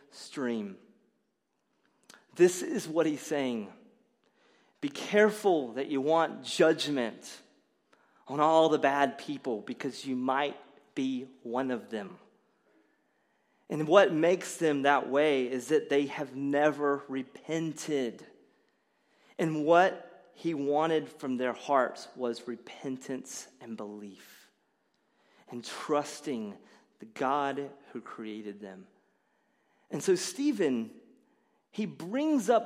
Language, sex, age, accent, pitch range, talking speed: English, male, 30-49, American, 140-220 Hz, 110 wpm